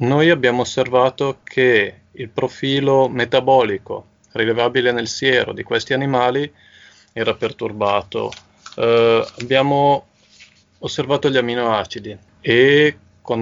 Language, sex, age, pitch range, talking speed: Italian, male, 30-49, 105-125 Hz, 100 wpm